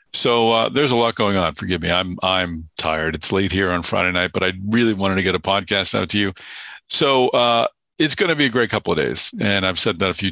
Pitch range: 95-115 Hz